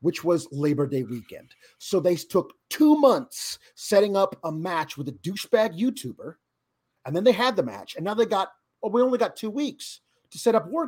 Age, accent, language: 40-59, American, English